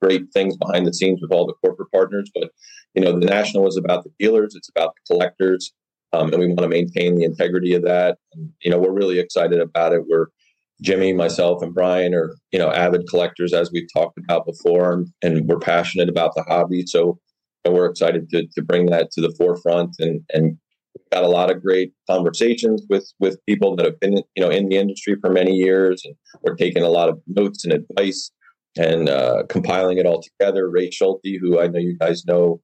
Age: 30-49